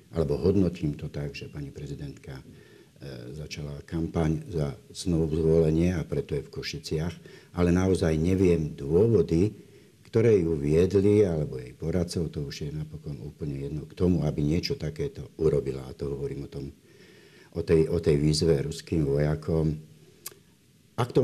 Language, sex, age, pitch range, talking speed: Slovak, male, 60-79, 75-85 Hz, 150 wpm